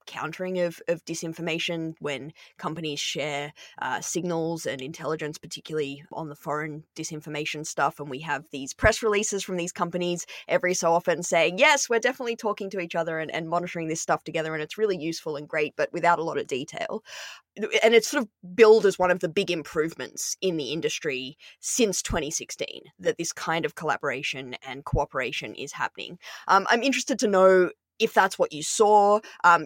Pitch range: 160-200 Hz